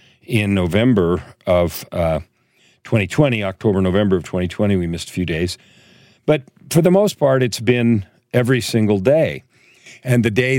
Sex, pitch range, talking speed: male, 95-125 Hz, 155 wpm